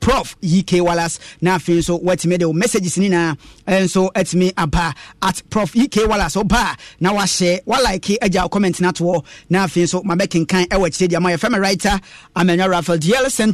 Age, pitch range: 30-49, 185-250 Hz